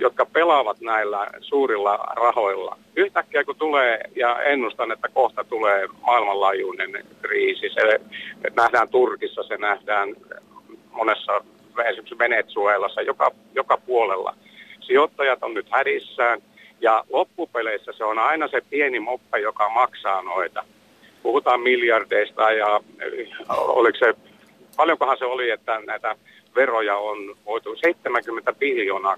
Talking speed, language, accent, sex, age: 115 wpm, Finnish, native, male, 50-69